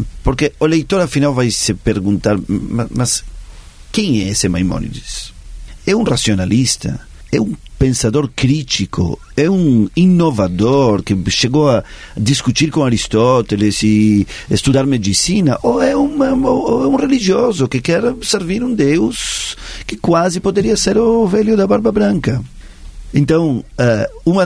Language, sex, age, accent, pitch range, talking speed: Portuguese, male, 40-59, Italian, 110-160 Hz, 135 wpm